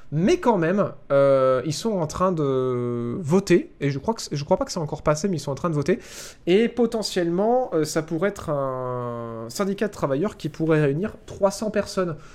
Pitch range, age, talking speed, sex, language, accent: 135-180 Hz, 20-39, 205 wpm, male, French, French